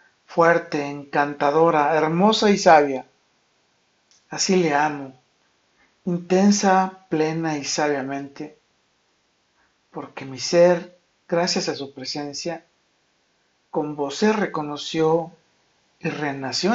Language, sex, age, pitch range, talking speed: Spanish, male, 50-69, 140-165 Hz, 90 wpm